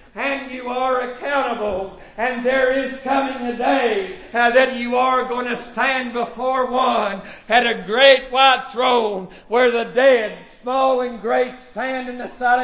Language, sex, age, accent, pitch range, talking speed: English, male, 60-79, American, 235-260 Hz, 155 wpm